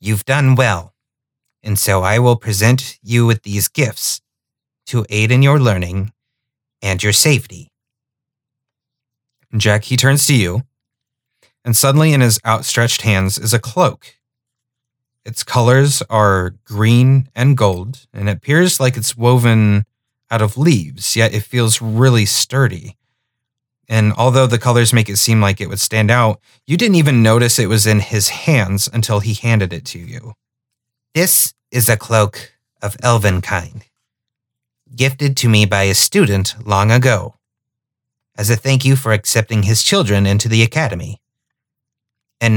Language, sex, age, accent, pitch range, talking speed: English, male, 30-49, American, 110-130 Hz, 150 wpm